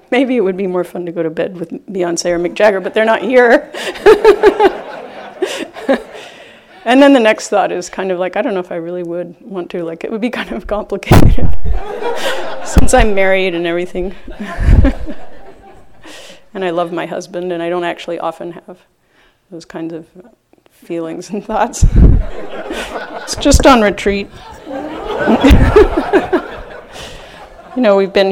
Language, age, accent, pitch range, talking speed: English, 30-49, American, 175-220 Hz, 155 wpm